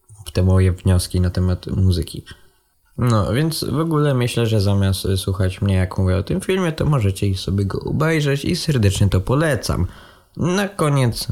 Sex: male